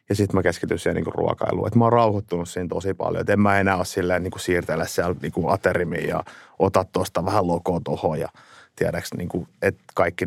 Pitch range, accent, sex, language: 90-110 Hz, native, male, Finnish